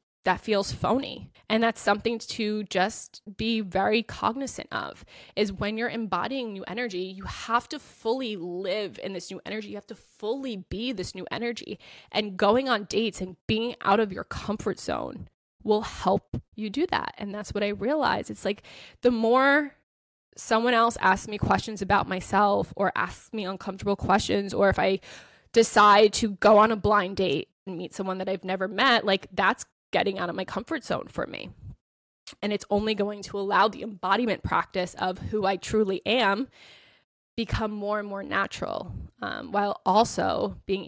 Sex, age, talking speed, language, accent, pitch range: female, 10-29, 180 wpm, English, American, 190-225 Hz